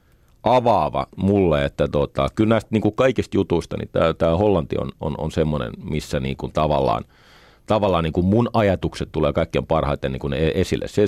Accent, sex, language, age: native, male, Finnish, 40-59